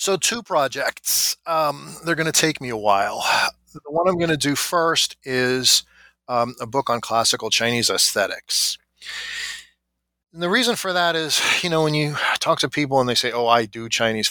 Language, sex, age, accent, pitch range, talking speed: English, male, 40-59, American, 110-145 Hz, 190 wpm